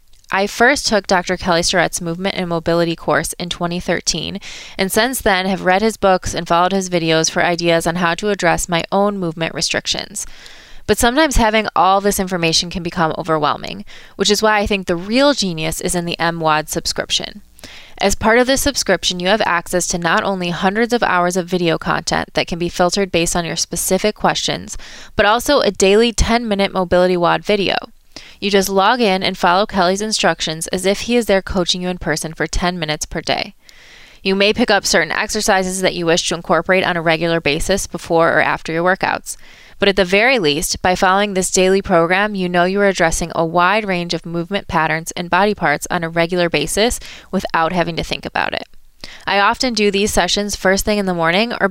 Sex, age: female, 20-39